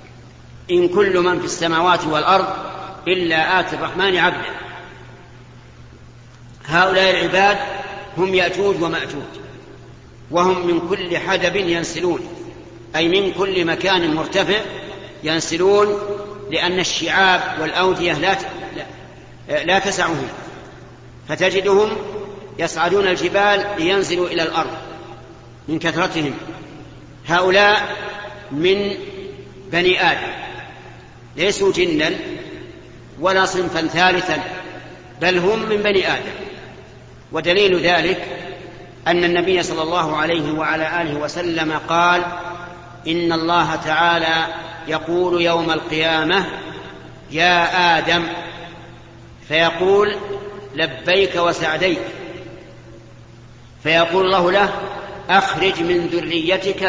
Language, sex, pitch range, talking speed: Arabic, male, 160-190 Hz, 85 wpm